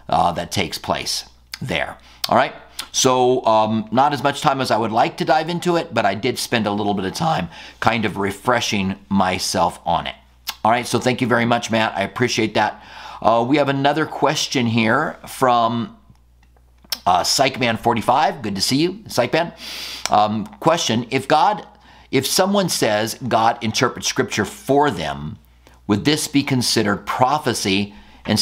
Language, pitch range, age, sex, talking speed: English, 95-125 Hz, 50-69, male, 165 wpm